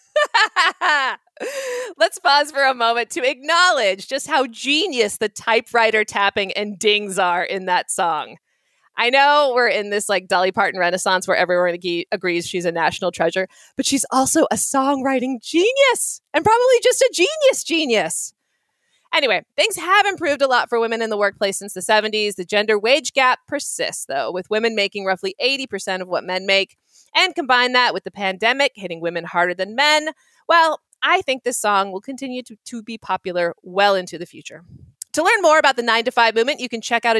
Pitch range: 195-290 Hz